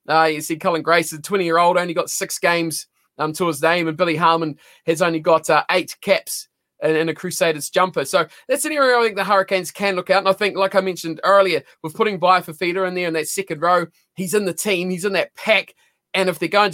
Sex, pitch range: male, 160-195 Hz